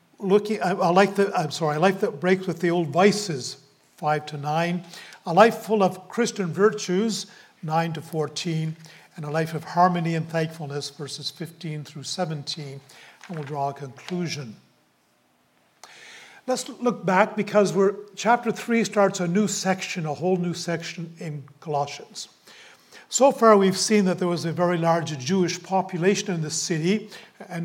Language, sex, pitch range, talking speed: English, male, 155-190 Hz, 165 wpm